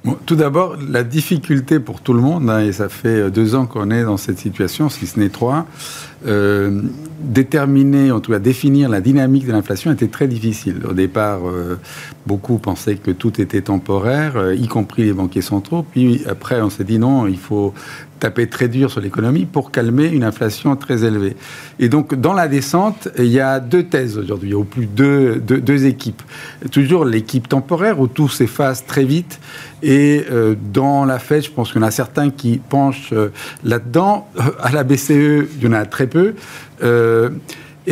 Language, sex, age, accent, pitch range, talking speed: French, male, 50-69, French, 115-150 Hz, 200 wpm